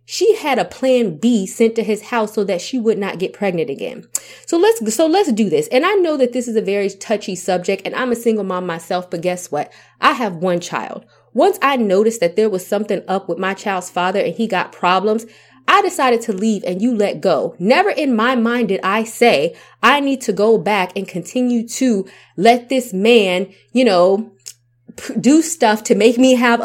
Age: 20-39